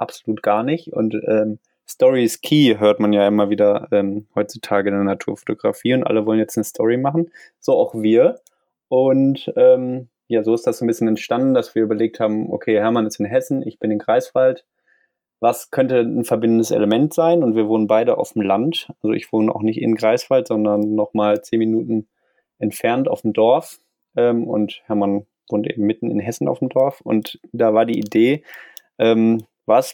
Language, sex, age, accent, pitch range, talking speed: German, male, 20-39, German, 110-130 Hz, 190 wpm